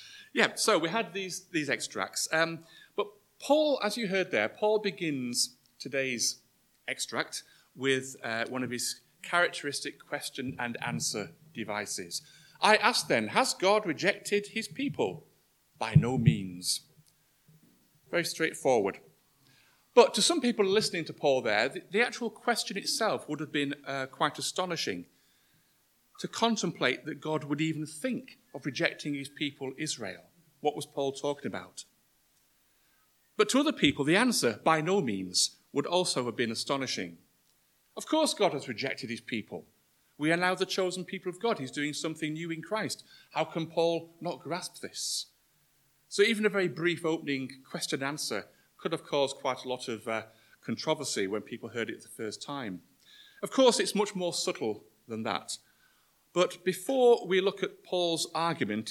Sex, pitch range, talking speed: male, 135-195 Hz, 160 wpm